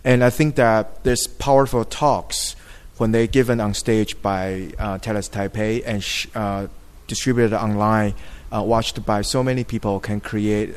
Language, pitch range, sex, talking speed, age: English, 100-120 Hz, male, 160 wpm, 20-39